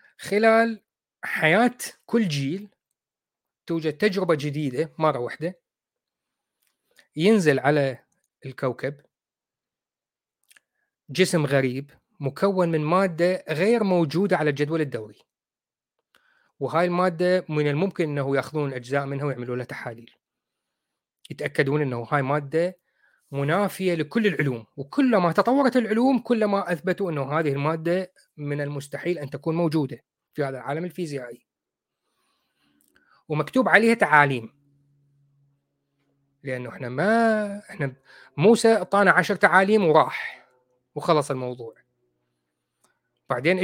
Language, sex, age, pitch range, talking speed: Arabic, male, 30-49, 140-185 Hz, 100 wpm